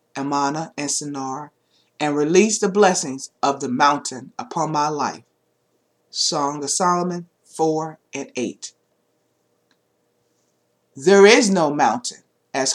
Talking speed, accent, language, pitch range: 110 wpm, American, English, 135-195 Hz